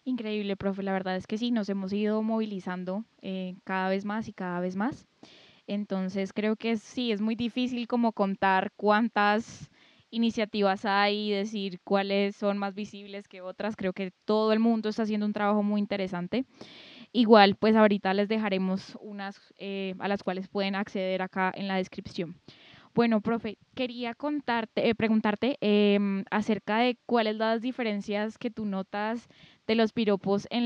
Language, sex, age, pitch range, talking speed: Spanish, female, 10-29, 195-230 Hz, 165 wpm